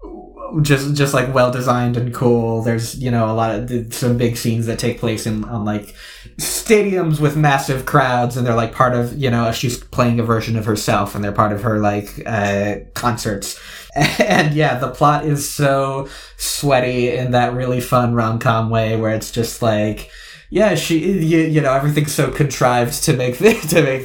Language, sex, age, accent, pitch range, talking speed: English, male, 20-39, American, 110-140 Hz, 190 wpm